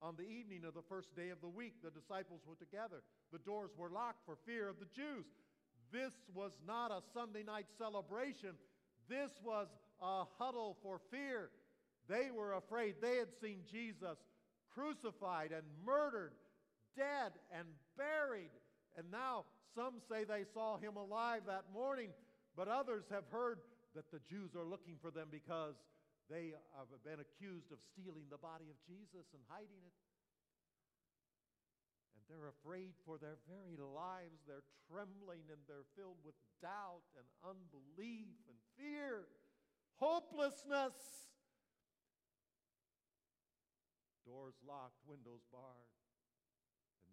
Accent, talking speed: American, 140 wpm